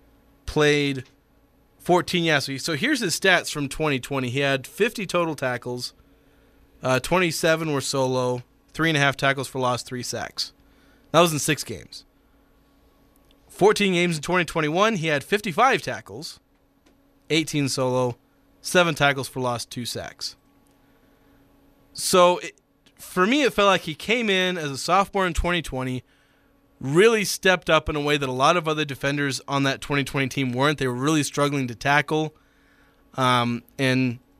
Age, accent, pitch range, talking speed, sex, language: 30-49, American, 130-165 Hz, 150 wpm, male, English